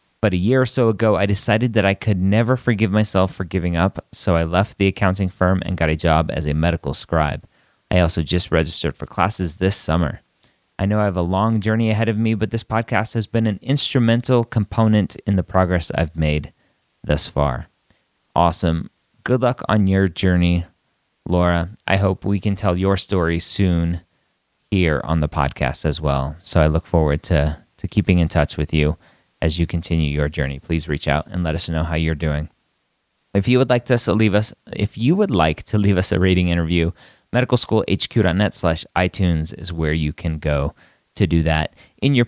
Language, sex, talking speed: English, male, 195 wpm